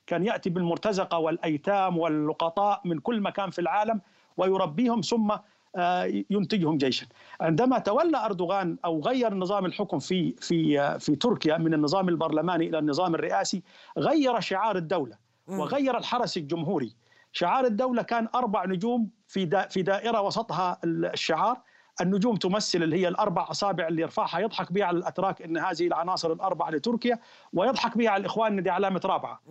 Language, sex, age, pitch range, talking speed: Arabic, male, 50-69, 175-225 Hz, 145 wpm